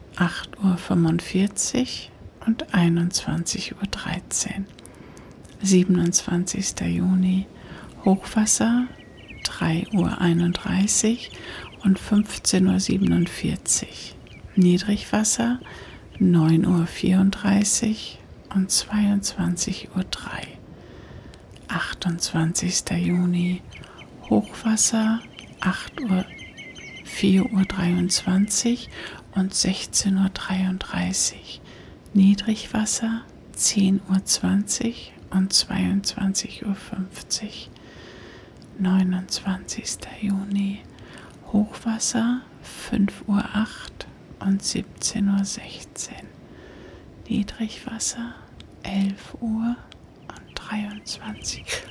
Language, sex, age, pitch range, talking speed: German, female, 60-79, 185-220 Hz, 65 wpm